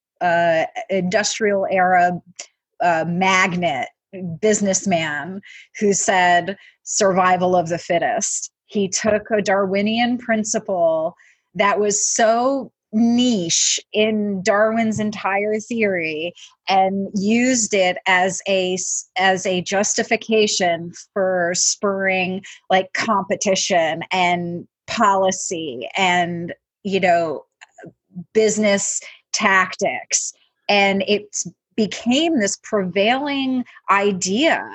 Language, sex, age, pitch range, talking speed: English, female, 30-49, 185-220 Hz, 85 wpm